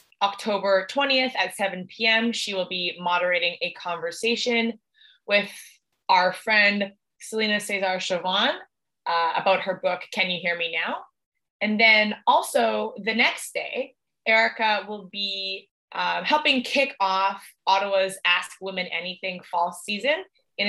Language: English